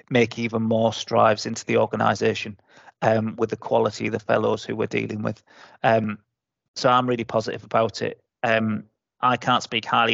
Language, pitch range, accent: English, 115-130 Hz, British